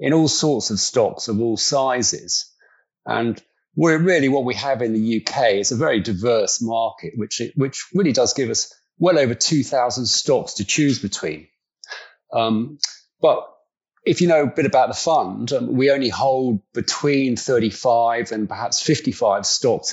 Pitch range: 115-150 Hz